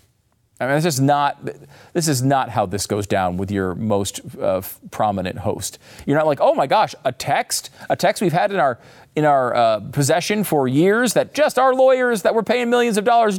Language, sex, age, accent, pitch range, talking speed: English, male, 40-59, American, 115-185 Hz, 215 wpm